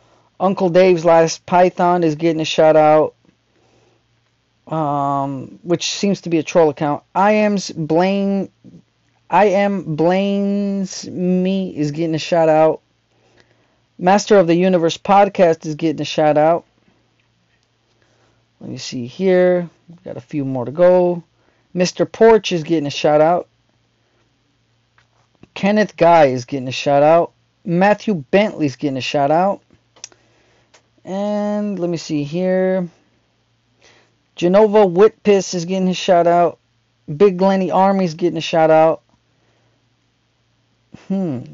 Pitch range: 125-185 Hz